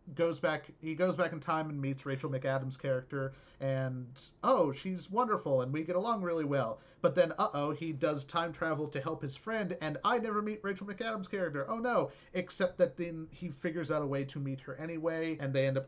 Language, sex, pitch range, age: English, male, 135-170 Hz, 40-59